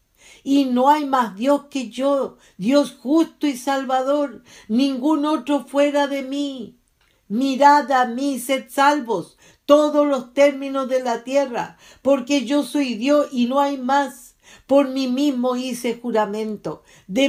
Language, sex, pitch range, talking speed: English, female, 200-275 Hz, 140 wpm